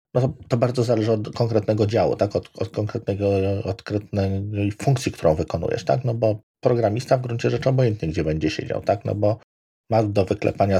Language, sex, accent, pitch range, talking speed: Polish, male, native, 90-110 Hz, 180 wpm